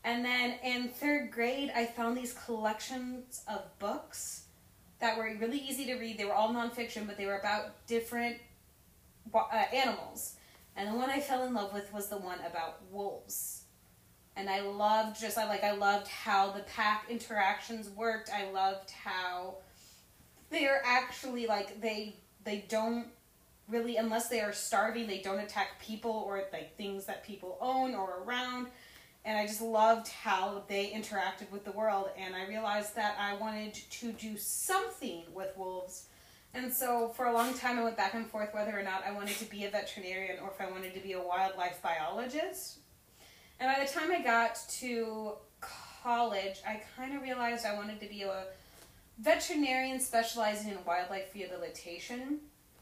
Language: English